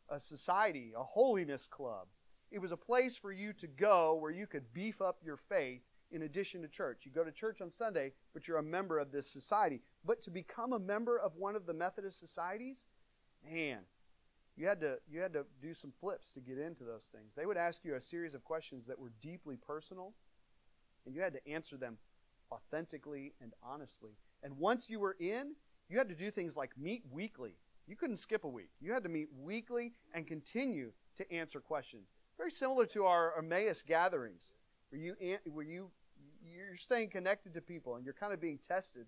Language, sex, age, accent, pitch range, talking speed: English, male, 40-59, American, 140-205 Hz, 200 wpm